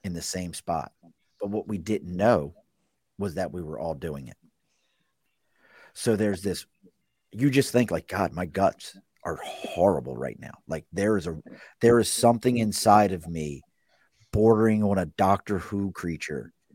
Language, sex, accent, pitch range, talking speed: English, male, American, 90-110 Hz, 165 wpm